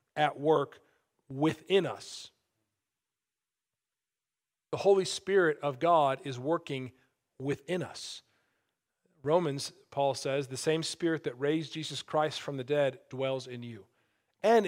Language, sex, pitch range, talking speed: English, male, 130-160 Hz, 125 wpm